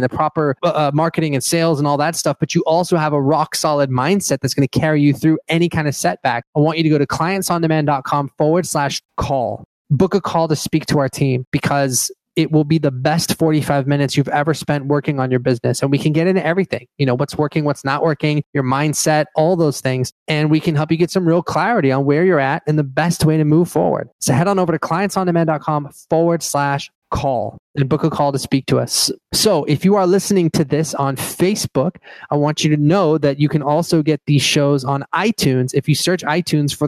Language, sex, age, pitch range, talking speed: English, male, 20-39, 140-165 Hz, 235 wpm